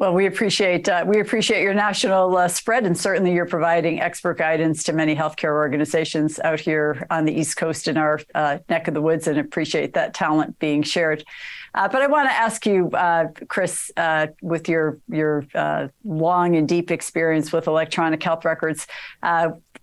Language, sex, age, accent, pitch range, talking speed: English, female, 50-69, American, 155-185 Hz, 190 wpm